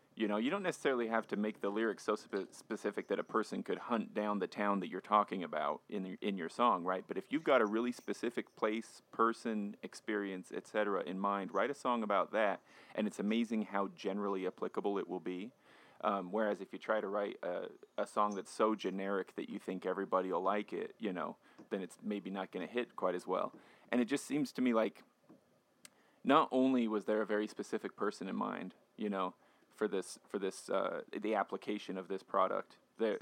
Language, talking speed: English, 220 wpm